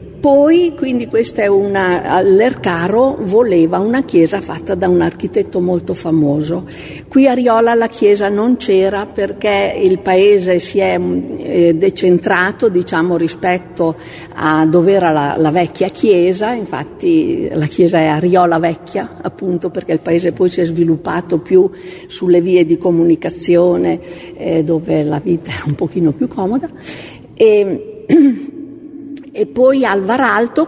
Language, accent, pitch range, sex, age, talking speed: Italian, native, 175-240 Hz, female, 50-69, 135 wpm